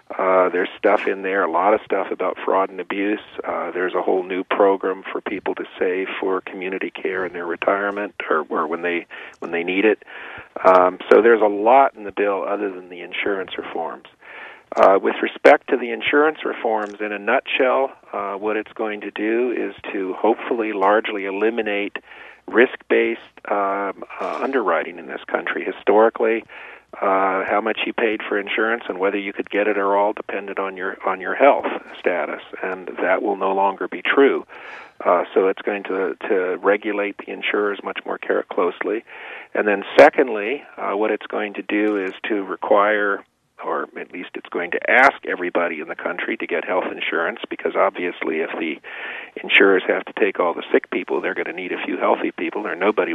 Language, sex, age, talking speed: English, male, 50-69, 190 wpm